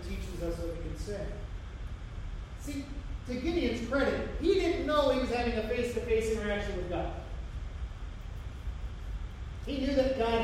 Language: English